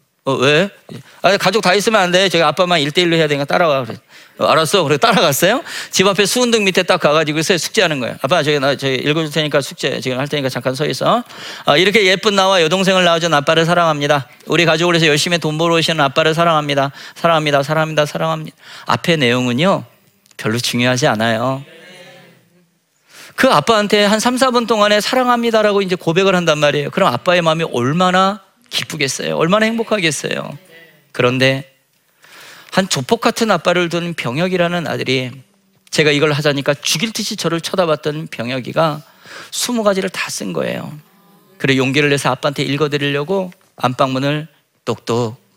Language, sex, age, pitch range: Korean, male, 40-59, 140-185 Hz